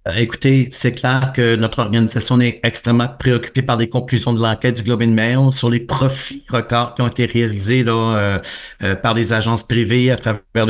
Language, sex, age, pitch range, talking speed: French, male, 60-79, 120-135 Hz, 195 wpm